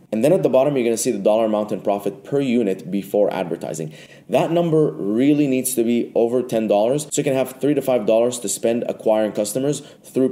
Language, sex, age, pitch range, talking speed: English, male, 20-39, 105-135 Hz, 220 wpm